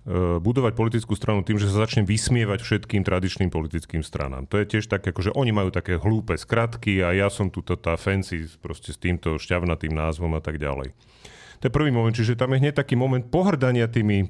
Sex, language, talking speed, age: male, Slovak, 205 wpm, 40-59